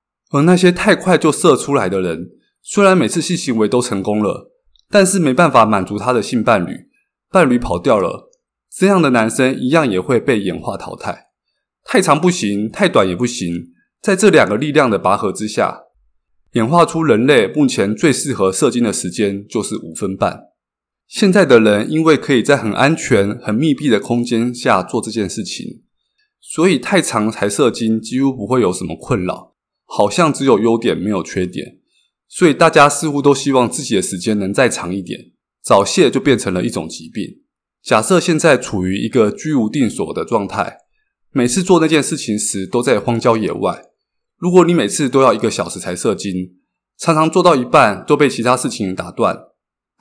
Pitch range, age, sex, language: 100-160 Hz, 20-39, male, Chinese